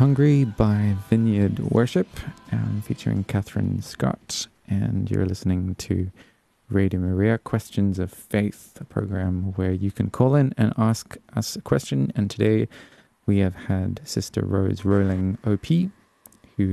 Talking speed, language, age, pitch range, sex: 140 wpm, English, 20-39, 95-115 Hz, male